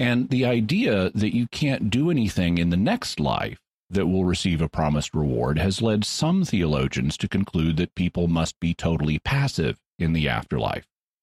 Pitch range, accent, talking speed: 90-130 Hz, American, 175 wpm